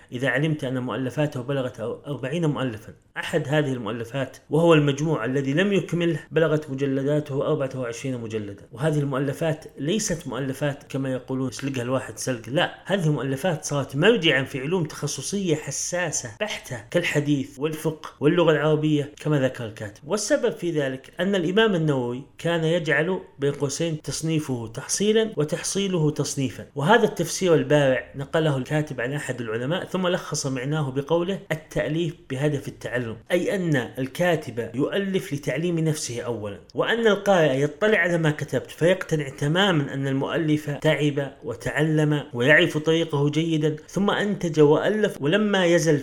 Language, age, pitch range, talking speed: Arabic, 30-49, 135-165 Hz, 130 wpm